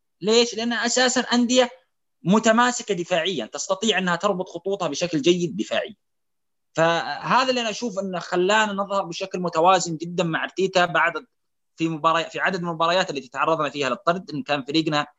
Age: 20-39